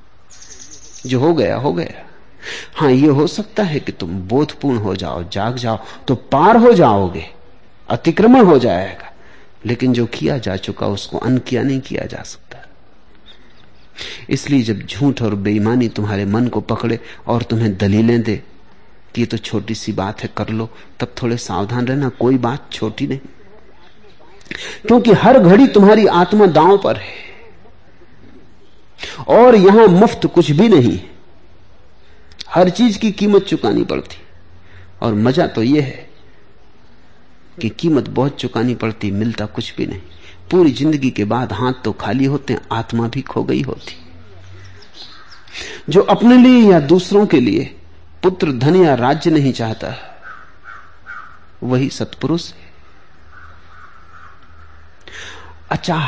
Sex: male